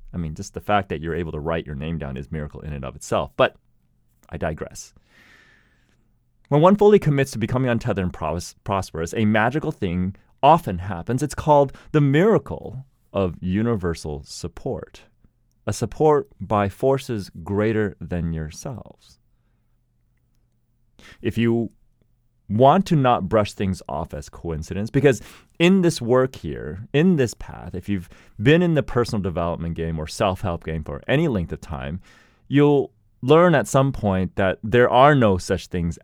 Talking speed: 160 wpm